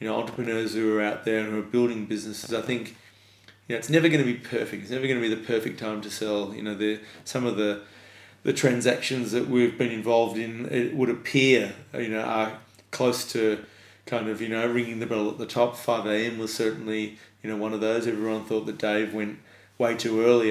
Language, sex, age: English, male, 30-49